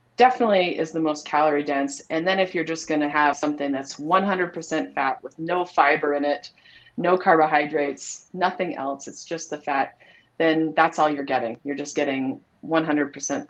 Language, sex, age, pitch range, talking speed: English, female, 30-49, 150-200 Hz, 175 wpm